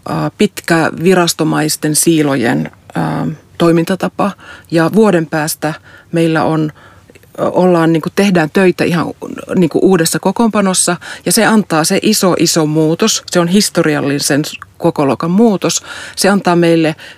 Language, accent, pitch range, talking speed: Finnish, native, 155-195 Hz, 110 wpm